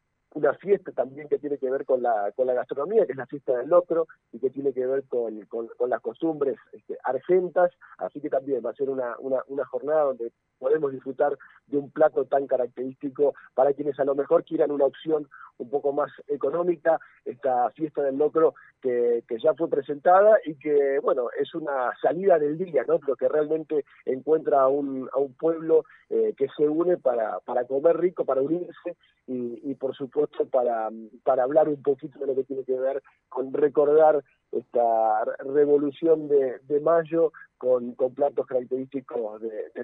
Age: 40-59